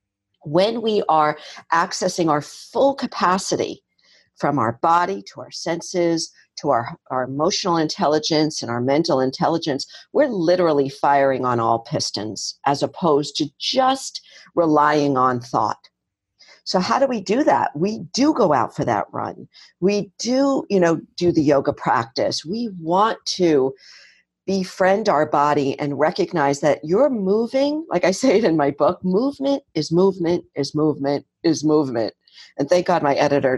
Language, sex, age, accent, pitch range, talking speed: English, female, 50-69, American, 145-195 Hz, 155 wpm